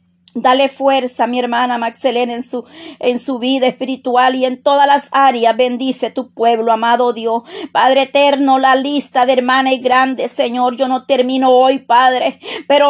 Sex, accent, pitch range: female, American, 265-325 Hz